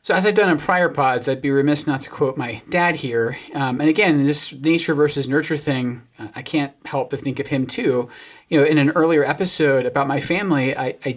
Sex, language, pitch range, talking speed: male, English, 125-160 Hz, 235 wpm